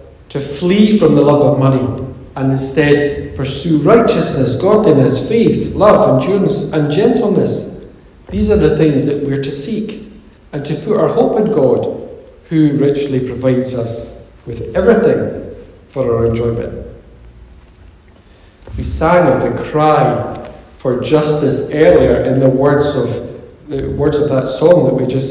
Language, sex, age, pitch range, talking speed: English, male, 50-69, 130-180 Hz, 140 wpm